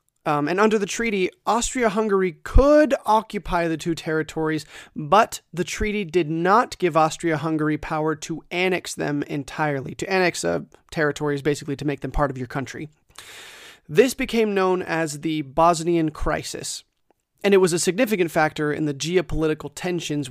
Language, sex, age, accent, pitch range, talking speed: English, male, 30-49, American, 150-185 Hz, 155 wpm